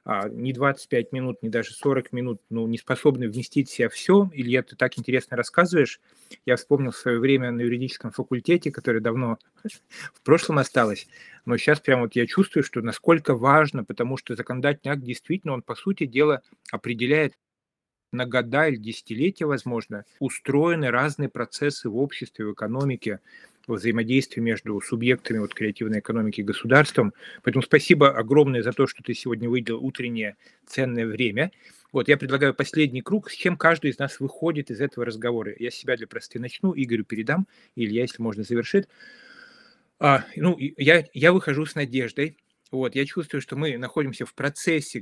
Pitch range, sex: 120-150 Hz, male